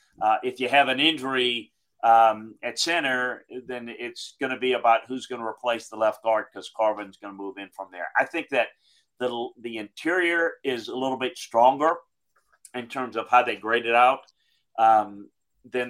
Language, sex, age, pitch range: English, male, 40-59, 105-130 Hz